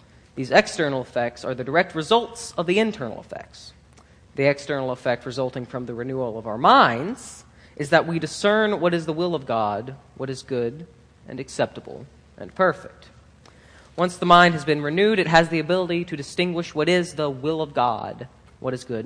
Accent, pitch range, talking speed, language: American, 130-175 Hz, 185 wpm, English